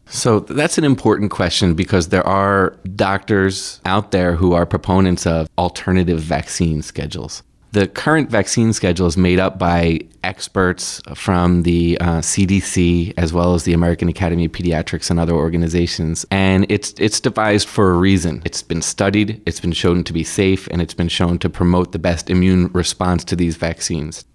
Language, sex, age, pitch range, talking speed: English, male, 30-49, 85-95 Hz, 175 wpm